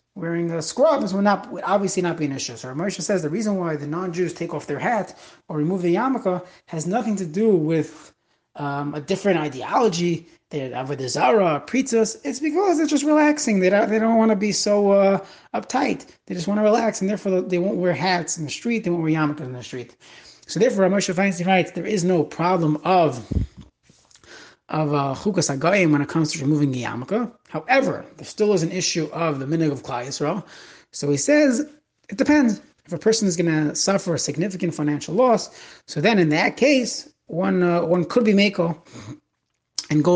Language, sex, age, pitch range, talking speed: English, male, 30-49, 155-210 Hz, 205 wpm